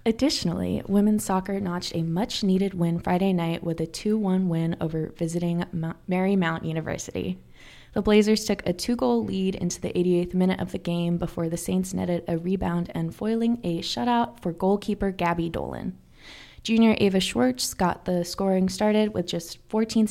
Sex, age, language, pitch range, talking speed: female, 20-39, English, 175-215 Hz, 160 wpm